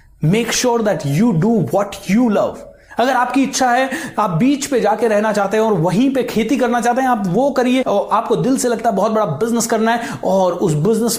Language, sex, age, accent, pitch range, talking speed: Hindi, male, 30-49, native, 160-235 Hz, 230 wpm